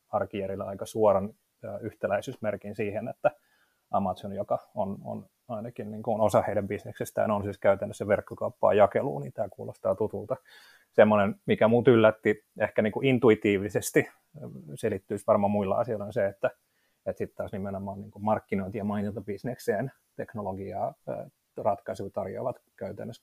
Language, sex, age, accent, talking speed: Finnish, male, 30-49, native, 135 wpm